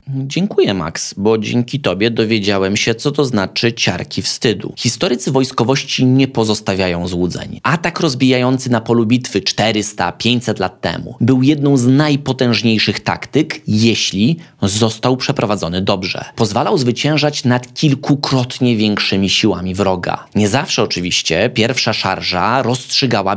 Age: 20-39